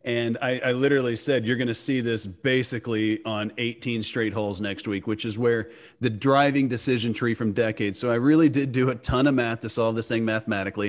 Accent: American